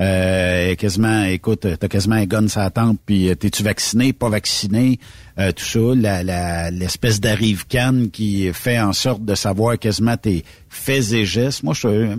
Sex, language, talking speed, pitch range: male, French, 175 wpm, 105-140 Hz